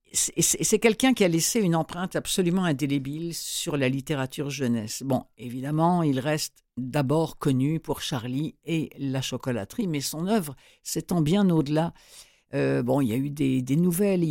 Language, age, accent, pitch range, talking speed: French, 60-79, French, 145-190 Hz, 165 wpm